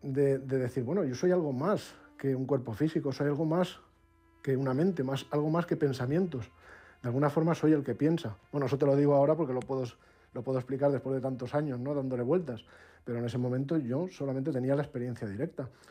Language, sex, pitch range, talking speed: Spanish, male, 120-150 Hz, 225 wpm